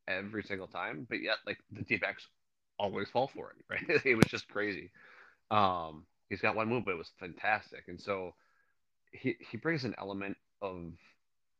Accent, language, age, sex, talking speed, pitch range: American, English, 30-49, male, 180 wpm, 90-100 Hz